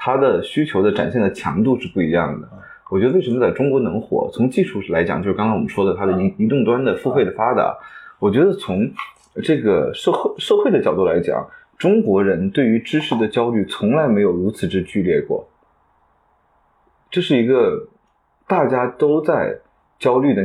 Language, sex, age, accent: Chinese, male, 20-39, native